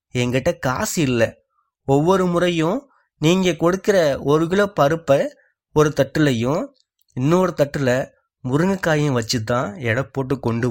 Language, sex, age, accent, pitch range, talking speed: Tamil, male, 20-39, native, 120-165 Hz, 105 wpm